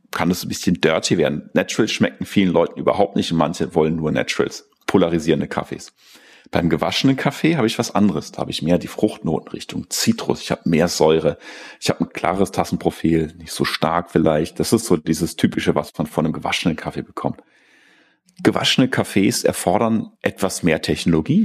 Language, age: German, 40-59